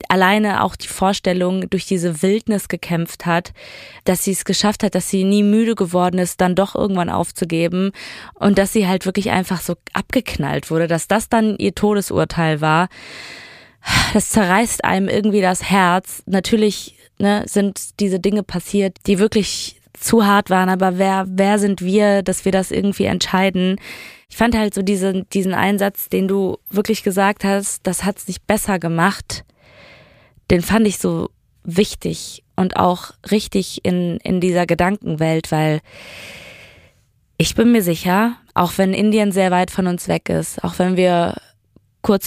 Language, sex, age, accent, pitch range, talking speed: German, female, 20-39, German, 180-205 Hz, 160 wpm